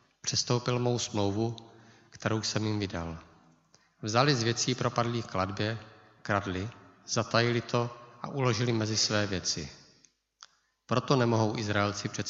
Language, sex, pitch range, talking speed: Czech, male, 100-120 Hz, 115 wpm